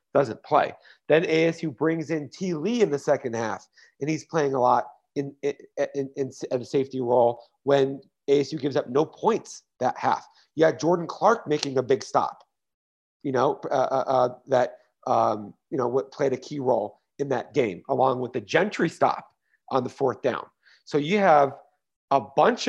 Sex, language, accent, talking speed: male, English, American, 185 wpm